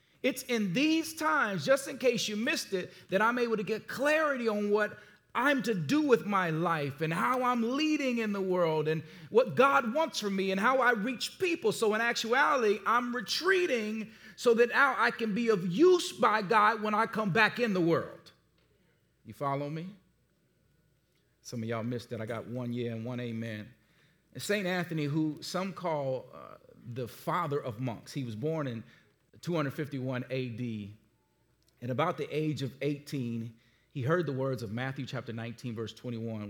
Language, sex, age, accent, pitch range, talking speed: English, male, 40-59, American, 120-200 Hz, 180 wpm